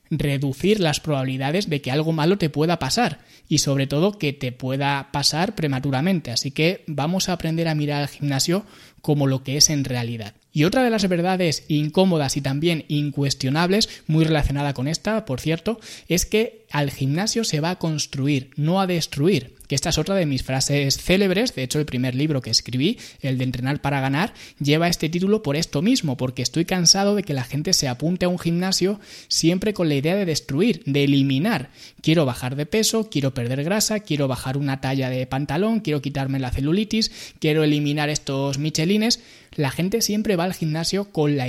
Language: Spanish